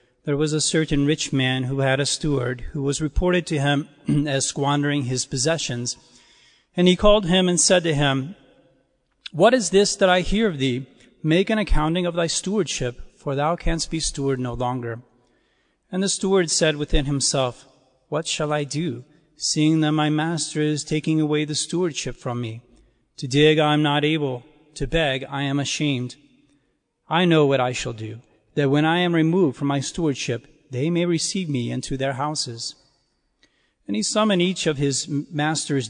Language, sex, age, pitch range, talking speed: English, male, 40-59, 135-170 Hz, 180 wpm